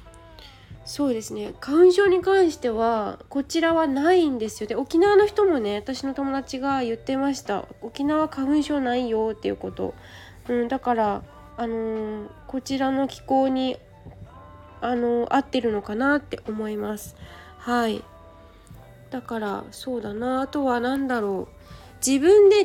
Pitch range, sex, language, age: 205-285 Hz, female, Japanese, 20-39